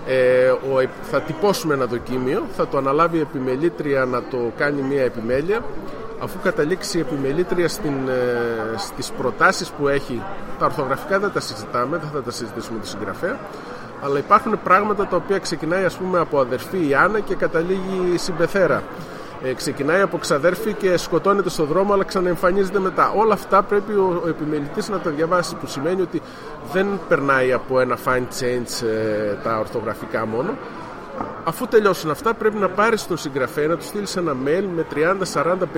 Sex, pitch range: male, 135-190 Hz